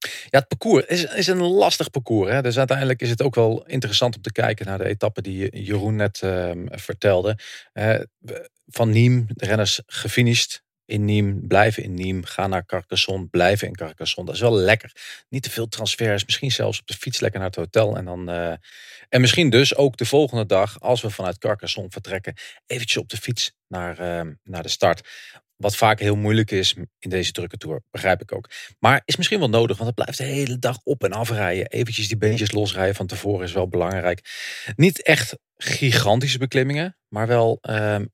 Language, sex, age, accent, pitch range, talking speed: English, male, 40-59, Dutch, 95-125 Hz, 200 wpm